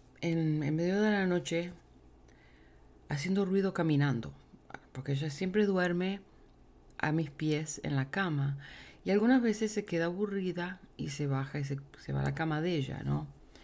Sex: female